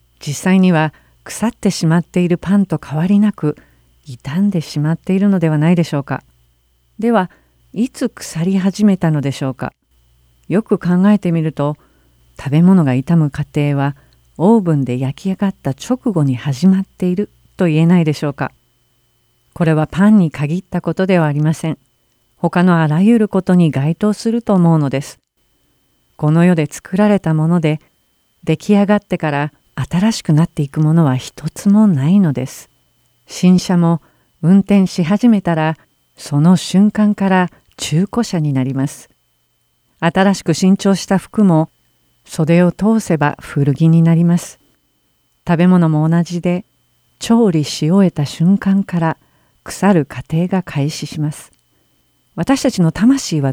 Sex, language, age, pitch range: female, Japanese, 50-69, 140-185 Hz